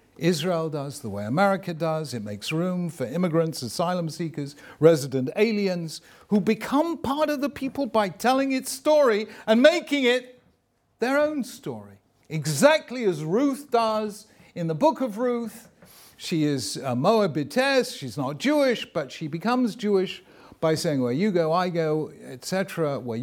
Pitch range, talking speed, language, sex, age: 120-190 Hz, 155 wpm, English, male, 50-69